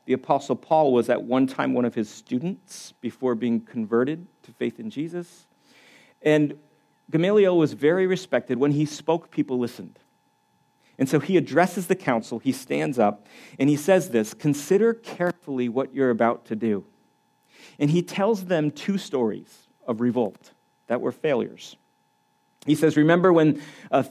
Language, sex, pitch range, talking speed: English, male, 120-170 Hz, 160 wpm